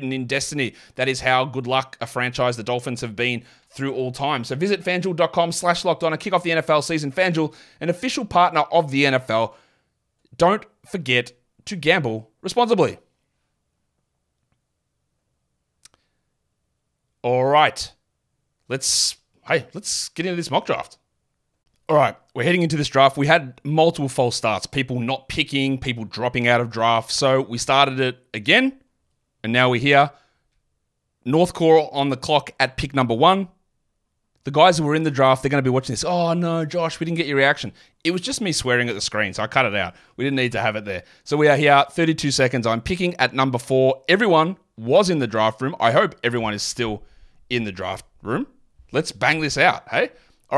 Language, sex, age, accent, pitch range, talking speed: English, male, 30-49, Australian, 125-165 Hz, 185 wpm